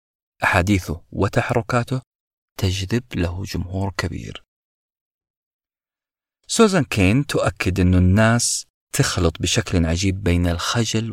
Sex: male